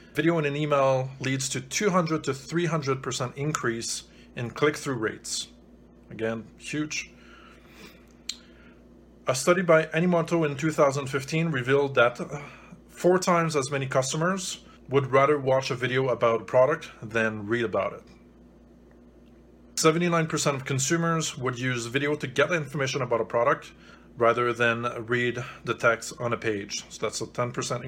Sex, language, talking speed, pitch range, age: male, English, 140 wpm, 115-150 Hz, 30-49